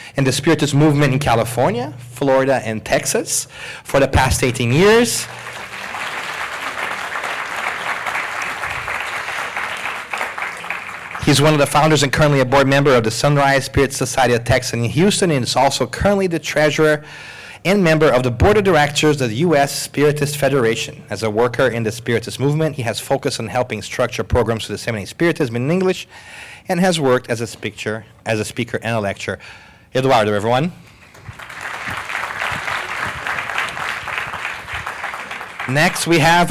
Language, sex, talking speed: English, male, 145 wpm